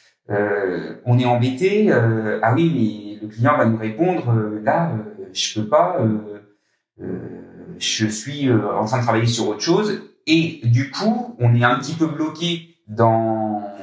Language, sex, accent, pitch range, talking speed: French, male, French, 110-145 Hz, 180 wpm